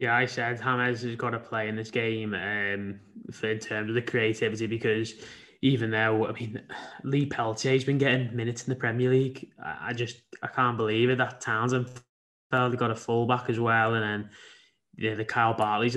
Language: English